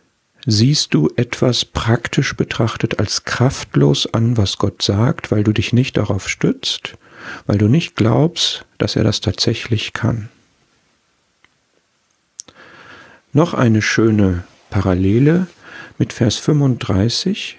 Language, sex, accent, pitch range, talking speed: German, male, German, 105-135 Hz, 115 wpm